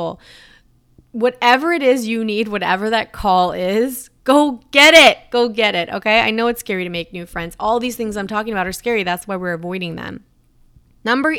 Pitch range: 180-240 Hz